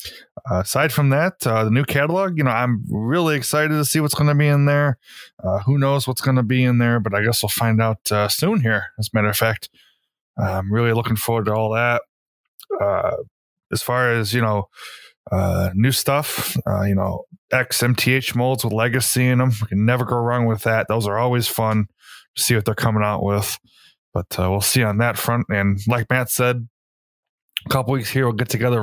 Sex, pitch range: male, 105-130 Hz